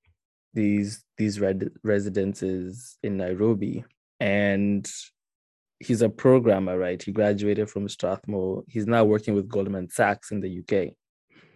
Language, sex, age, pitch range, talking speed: English, male, 20-39, 95-110 Hz, 120 wpm